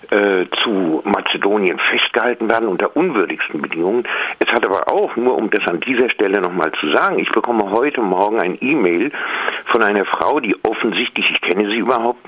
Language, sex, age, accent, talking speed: German, male, 50-69, German, 175 wpm